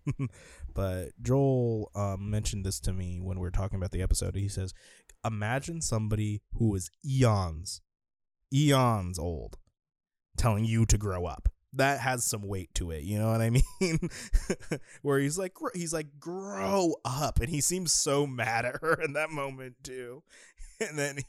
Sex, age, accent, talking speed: male, 20-39, American, 165 wpm